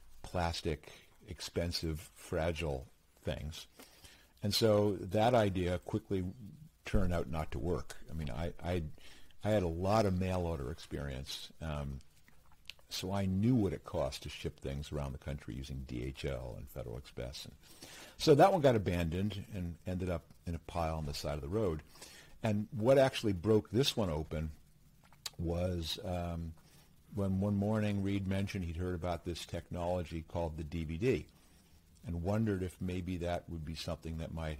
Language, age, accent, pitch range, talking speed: English, 60-79, American, 80-105 Hz, 165 wpm